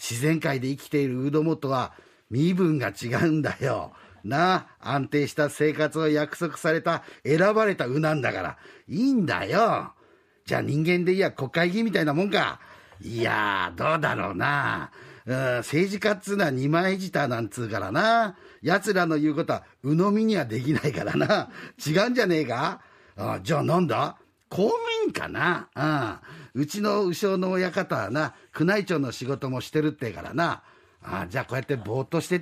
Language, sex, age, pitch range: Japanese, male, 50-69, 140-200 Hz